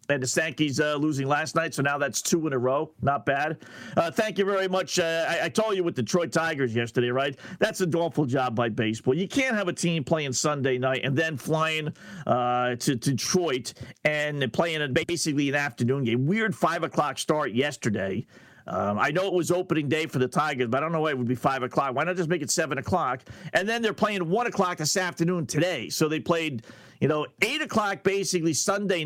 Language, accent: English, American